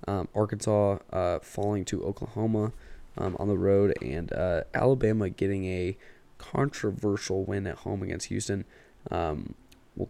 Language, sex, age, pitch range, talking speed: English, male, 20-39, 90-105 Hz, 135 wpm